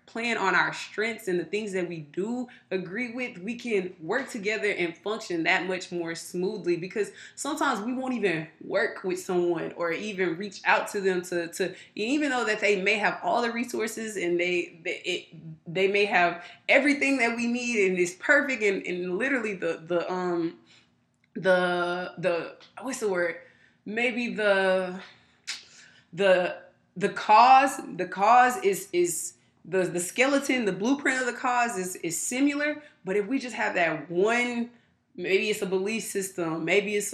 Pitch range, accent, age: 180-230 Hz, American, 20-39